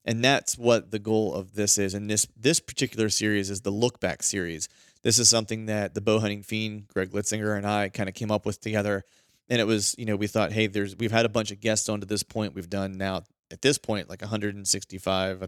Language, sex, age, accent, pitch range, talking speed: English, male, 30-49, American, 100-115 Hz, 240 wpm